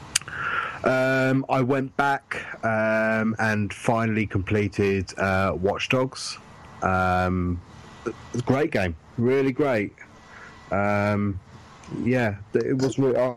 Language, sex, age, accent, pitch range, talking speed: English, male, 30-49, British, 100-130 Hz, 110 wpm